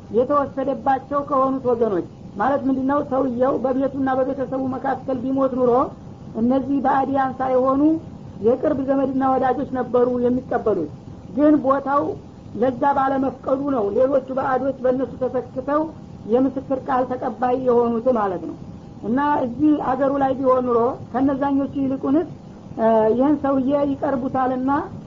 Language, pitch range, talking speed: Amharic, 255-275 Hz, 105 wpm